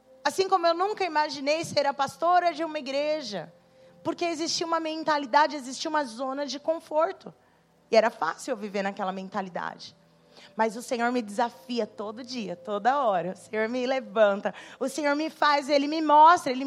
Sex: female